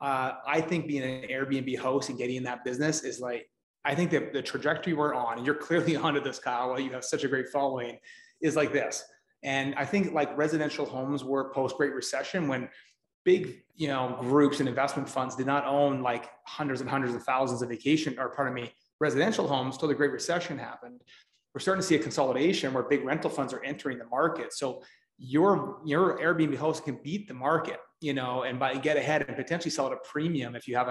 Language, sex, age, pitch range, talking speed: English, male, 30-49, 130-155 Hz, 220 wpm